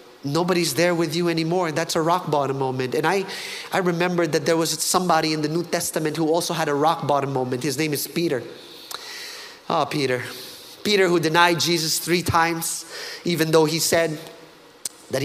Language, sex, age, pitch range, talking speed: English, male, 30-49, 140-180 Hz, 180 wpm